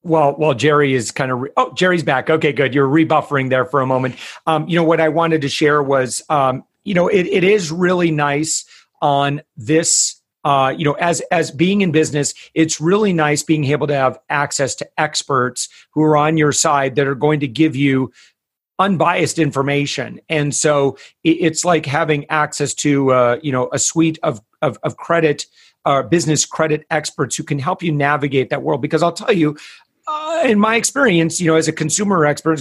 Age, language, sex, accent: 40-59, English, male, American